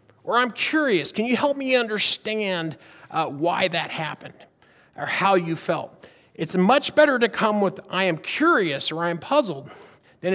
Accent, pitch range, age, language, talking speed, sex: American, 160-215 Hz, 40-59, English, 175 wpm, male